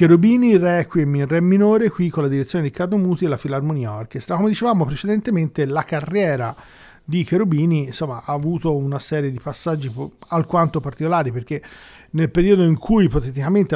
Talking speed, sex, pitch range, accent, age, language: 160 wpm, male, 135-175 Hz, native, 40-59, Italian